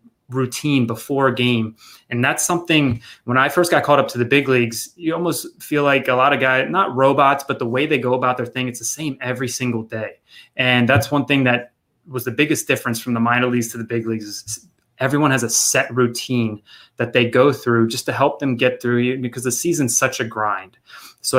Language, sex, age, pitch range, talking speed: English, male, 20-39, 120-135 Hz, 230 wpm